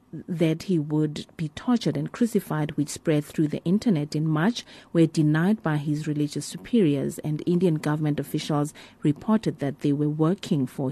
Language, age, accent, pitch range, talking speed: English, 30-49, South African, 150-185 Hz, 165 wpm